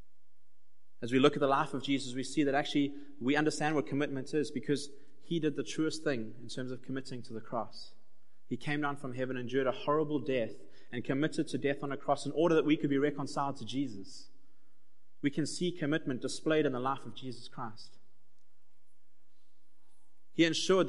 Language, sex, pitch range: English, male, 130-155 Hz